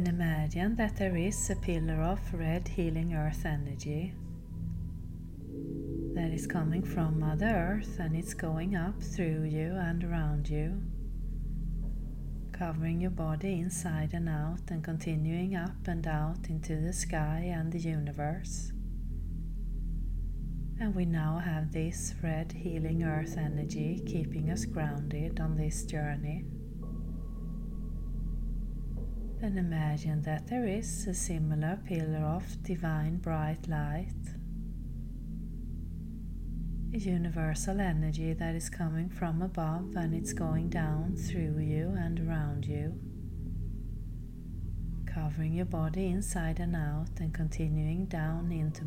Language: English